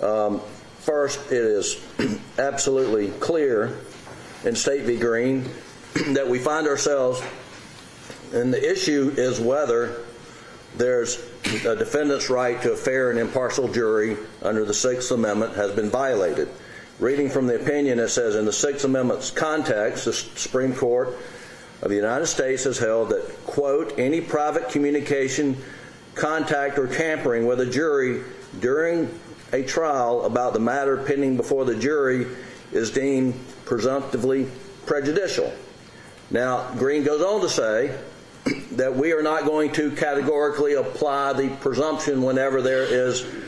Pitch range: 125-155 Hz